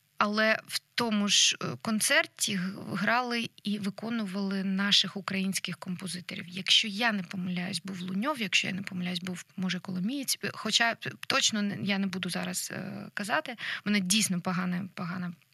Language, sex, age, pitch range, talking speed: Ukrainian, female, 20-39, 185-215 Hz, 140 wpm